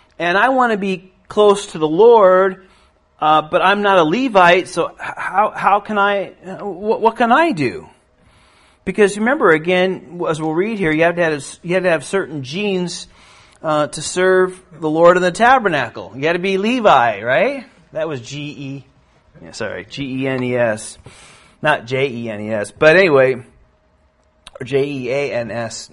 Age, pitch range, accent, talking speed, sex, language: 40-59, 145-220 Hz, American, 185 wpm, male, Finnish